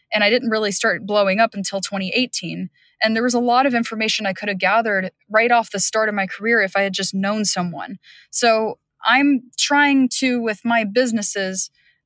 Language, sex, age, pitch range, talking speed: English, female, 20-39, 190-225 Hz, 200 wpm